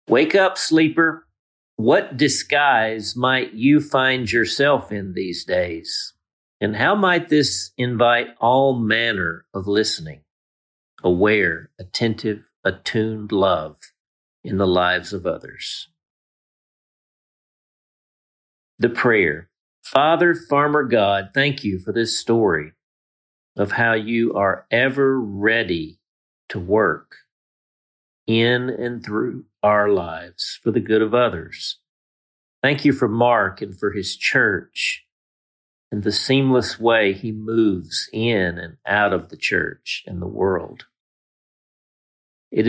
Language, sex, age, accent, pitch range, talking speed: English, male, 50-69, American, 95-125 Hz, 115 wpm